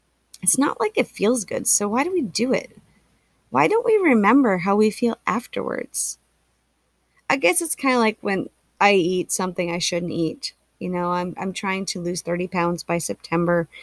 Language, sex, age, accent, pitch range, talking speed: English, female, 30-49, American, 175-225 Hz, 190 wpm